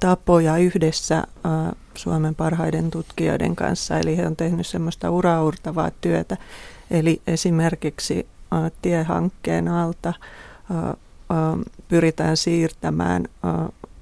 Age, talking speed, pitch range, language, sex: 30-49, 105 wpm, 160-175 Hz, Finnish, female